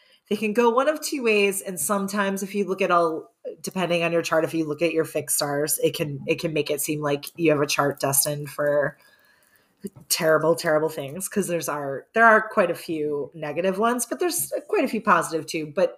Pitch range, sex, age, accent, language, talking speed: 155-205 Hz, female, 30-49, American, English, 225 wpm